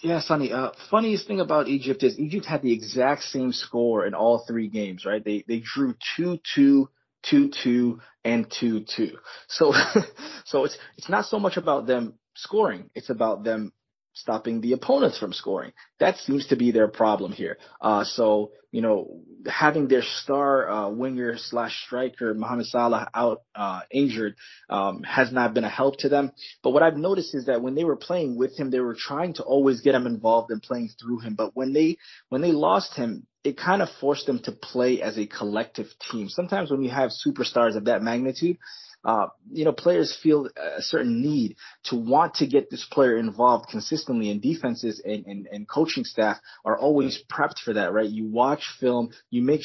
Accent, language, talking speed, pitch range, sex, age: American, English, 200 wpm, 115-145 Hz, male, 20-39